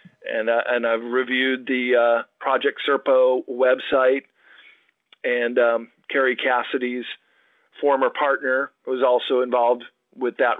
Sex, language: male, English